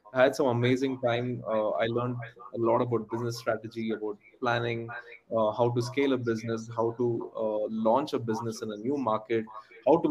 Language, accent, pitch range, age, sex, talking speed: English, Indian, 115-130 Hz, 20-39, male, 195 wpm